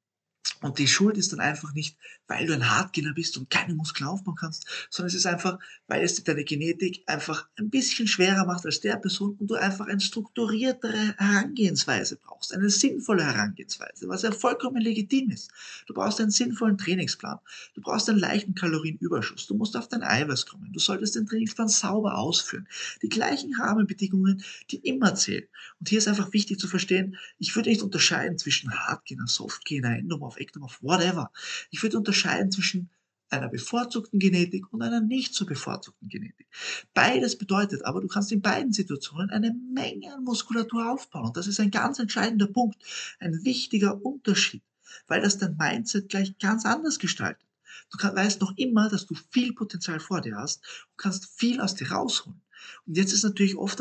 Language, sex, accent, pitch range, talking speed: German, male, German, 175-220 Hz, 175 wpm